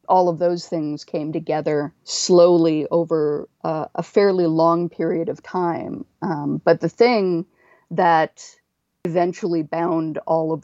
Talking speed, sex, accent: 135 wpm, female, American